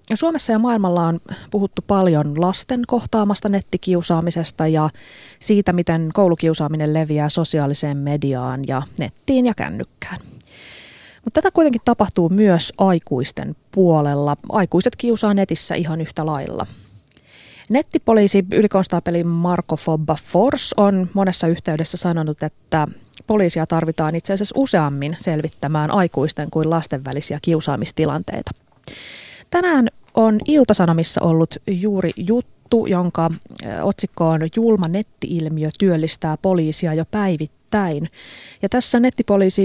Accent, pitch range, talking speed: native, 155-200 Hz, 110 wpm